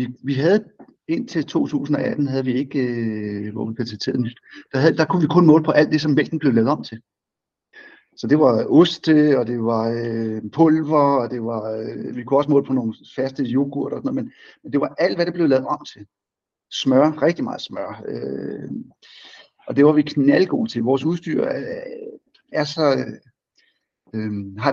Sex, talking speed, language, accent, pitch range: male, 195 wpm, Danish, native, 115-160 Hz